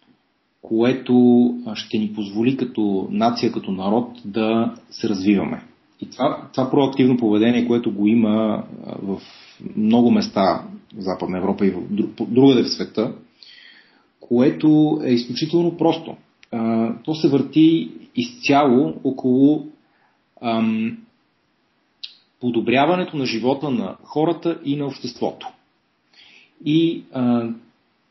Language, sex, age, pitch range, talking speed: Bulgarian, male, 30-49, 110-140 Hz, 110 wpm